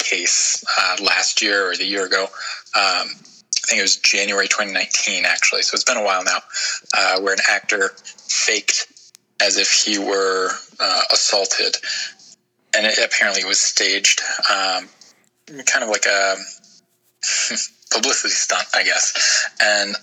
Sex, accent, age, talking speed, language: male, American, 20-39, 145 wpm, English